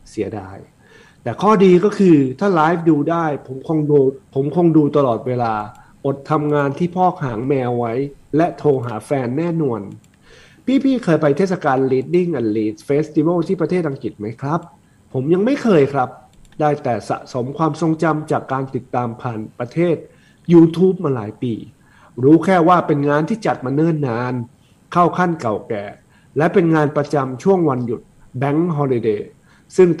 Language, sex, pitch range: Thai, male, 130-170 Hz